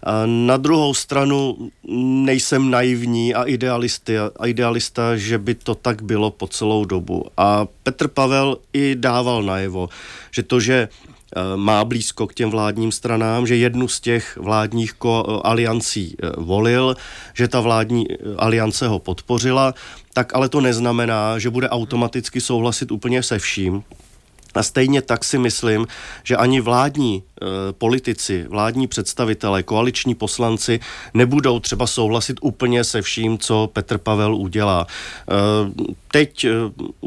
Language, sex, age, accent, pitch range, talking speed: Czech, male, 40-59, native, 110-125 Hz, 135 wpm